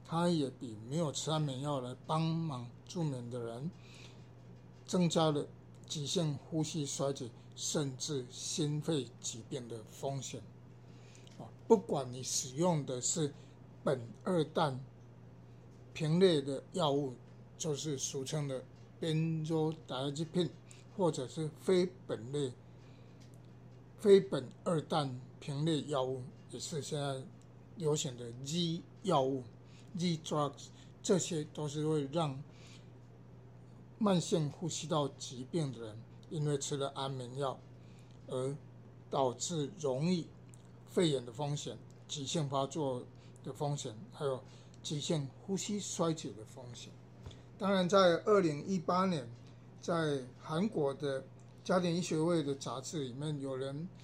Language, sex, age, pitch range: Chinese, male, 60-79, 130-165 Hz